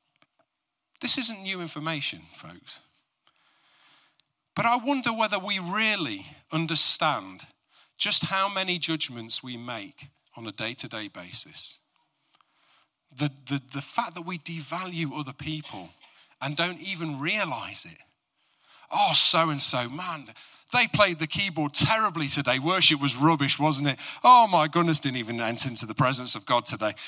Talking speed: 145 wpm